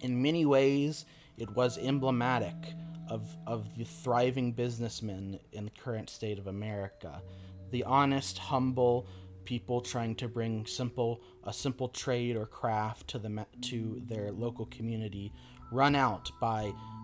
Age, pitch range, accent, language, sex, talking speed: 30-49, 105-125 Hz, American, English, male, 135 wpm